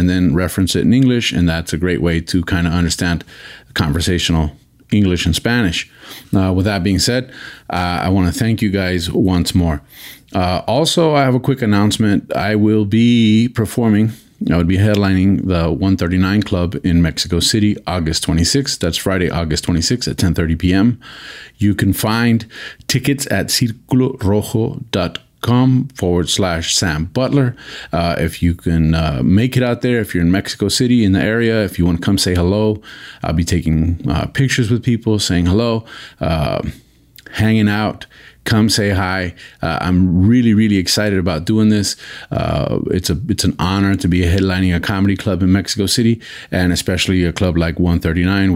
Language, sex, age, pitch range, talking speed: Spanish, male, 40-59, 85-110 Hz, 175 wpm